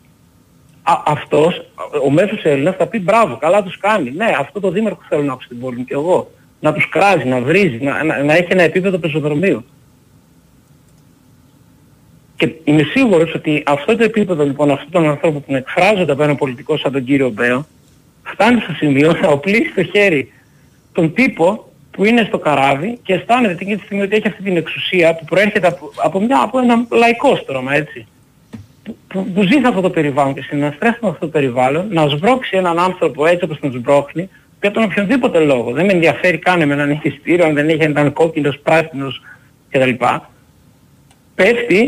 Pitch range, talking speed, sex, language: 145-200 Hz, 185 wpm, male, Greek